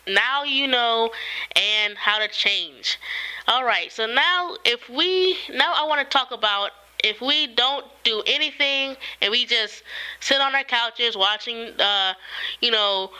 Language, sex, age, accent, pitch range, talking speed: English, female, 20-39, American, 200-250 Hz, 160 wpm